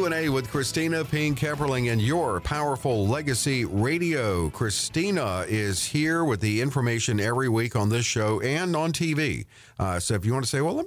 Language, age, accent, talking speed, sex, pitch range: English, 50-69, American, 190 wpm, male, 100-130 Hz